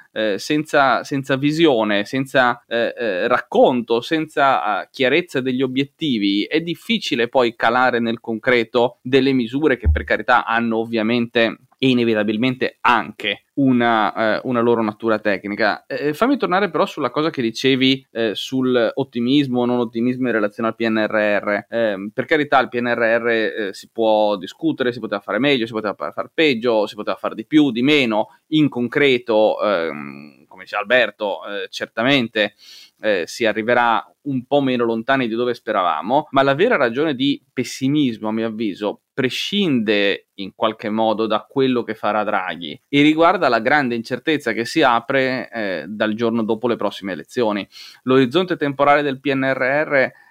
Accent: native